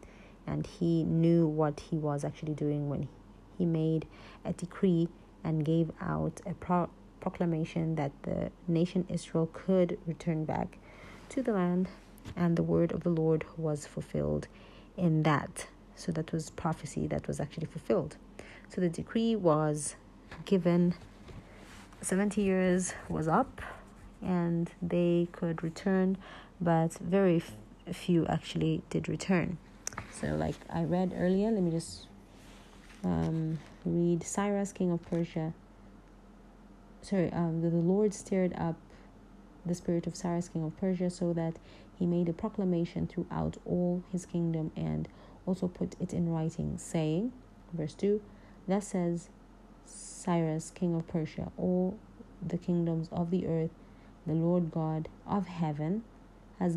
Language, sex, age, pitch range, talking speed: English, female, 30-49, 155-180 Hz, 135 wpm